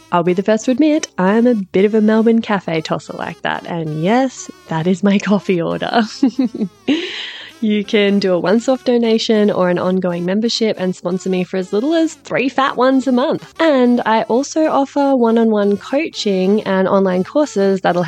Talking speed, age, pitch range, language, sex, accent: 185 wpm, 20-39, 180-235 Hz, English, female, Australian